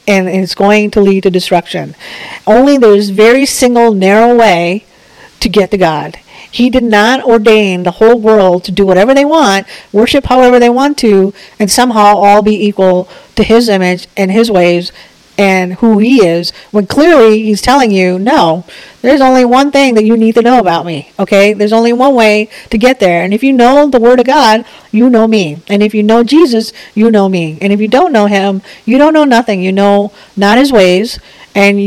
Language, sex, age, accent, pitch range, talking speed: English, female, 50-69, American, 195-245 Hz, 205 wpm